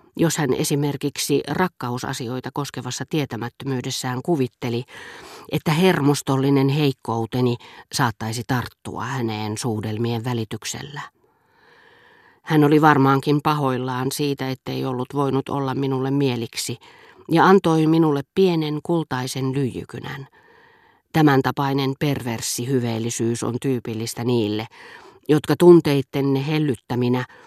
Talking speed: 90 wpm